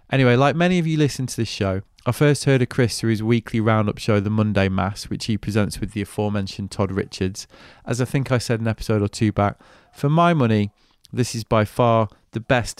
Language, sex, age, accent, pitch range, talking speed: English, male, 20-39, British, 100-125 Hz, 230 wpm